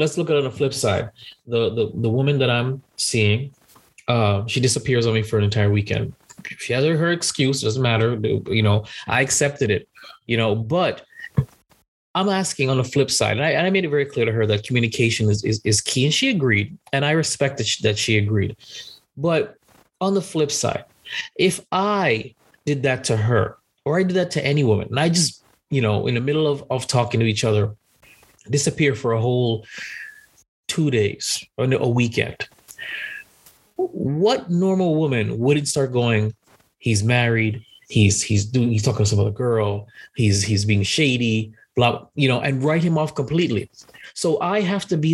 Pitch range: 110-145 Hz